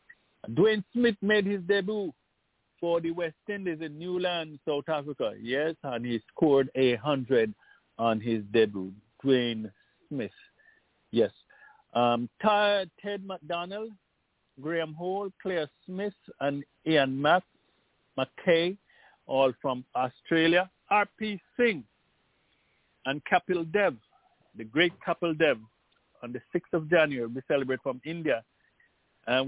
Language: English